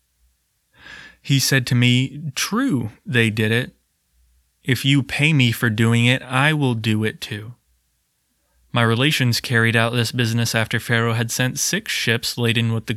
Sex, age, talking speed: male, 20-39, 160 wpm